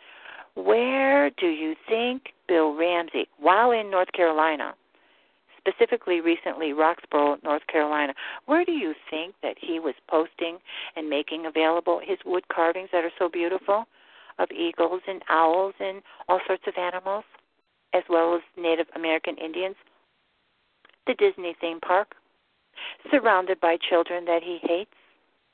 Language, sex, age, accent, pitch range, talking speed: English, female, 50-69, American, 165-225 Hz, 135 wpm